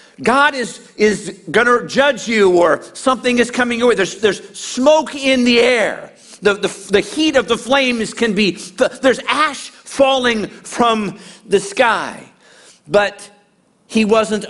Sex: male